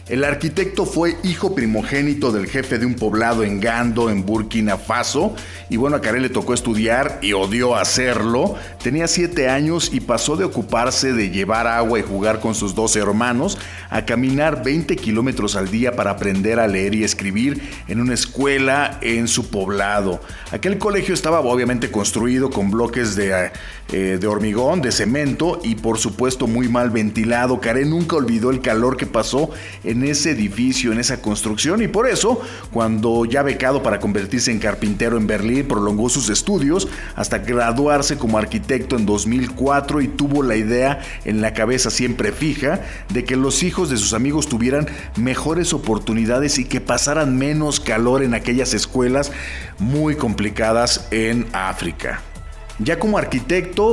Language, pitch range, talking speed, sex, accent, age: Spanish, 110-135 Hz, 165 wpm, male, Mexican, 40-59